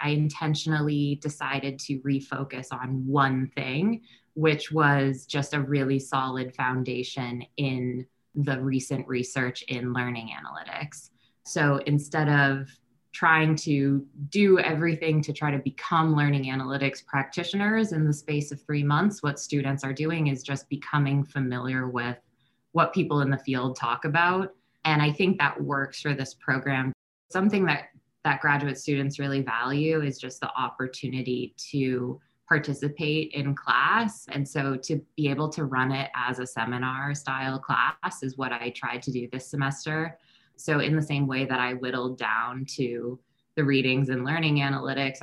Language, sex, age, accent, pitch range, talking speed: English, female, 20-39, American, 130-150 Hz, 155 wpm